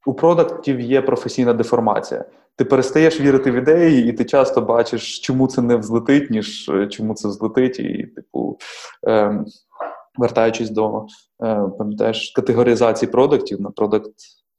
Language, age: Russian, 20-39